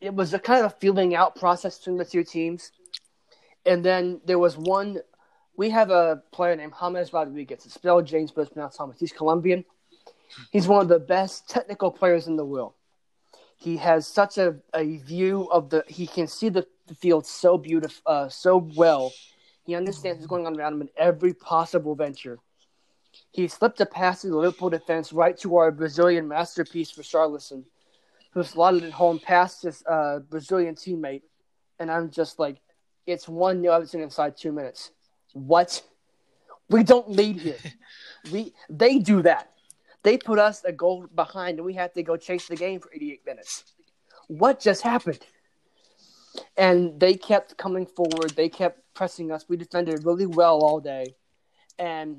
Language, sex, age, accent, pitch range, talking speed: English, male, 20-39, American, 160-185 Hz, 175 wpm